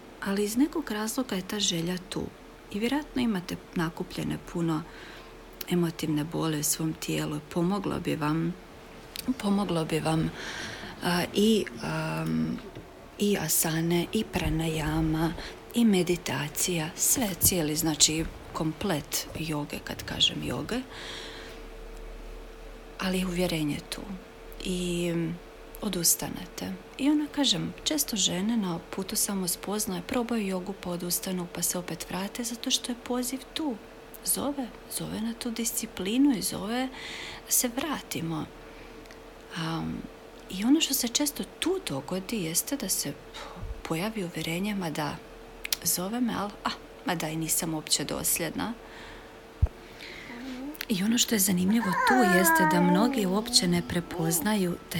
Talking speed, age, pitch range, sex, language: 125 wpm, 40-59, 160-220 Hz, female, Croatian